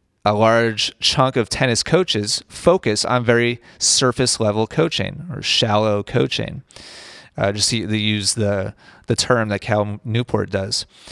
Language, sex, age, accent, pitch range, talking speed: English, male, 30-49, American, 105-130 Hz, 140 wpm